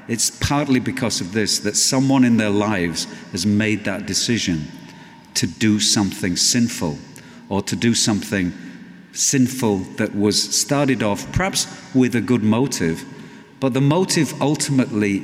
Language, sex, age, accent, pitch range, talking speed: English, male, 50-69, British, 105-140 Hz, 140 wpm